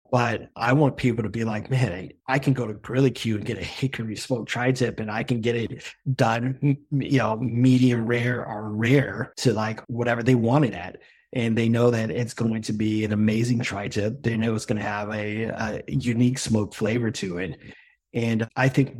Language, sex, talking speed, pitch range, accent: English, male, 210 wpm, 115-140 Hz, American